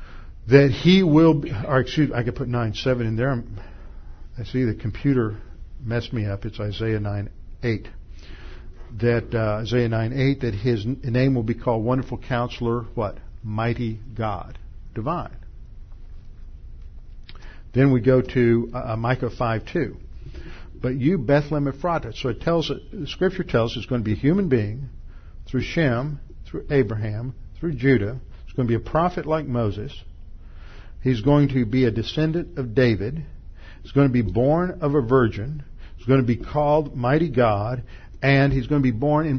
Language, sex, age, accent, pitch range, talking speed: English, male, 50-69, American, 110-145 Hz, 160 wpm